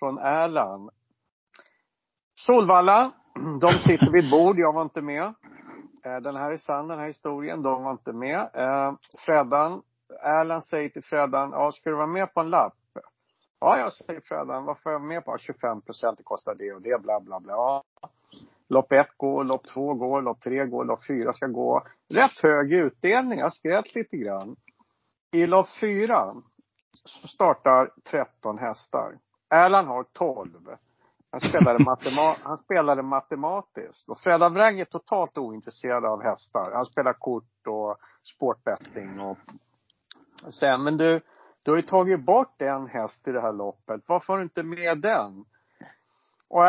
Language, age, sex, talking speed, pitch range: Swedish, 50-69, male, 155 wpm, 130-170 Hz